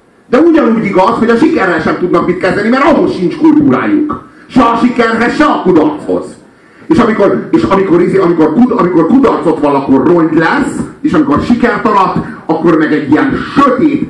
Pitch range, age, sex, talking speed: 180-275 Hz, 40-59, male, 170 wpm